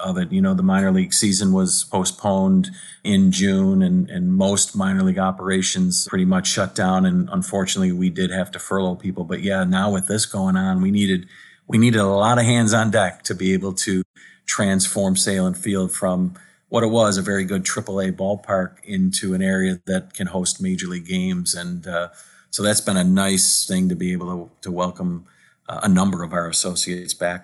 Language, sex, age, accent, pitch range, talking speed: English, male, 40-59, American, 95-125 Hz, 200 wpm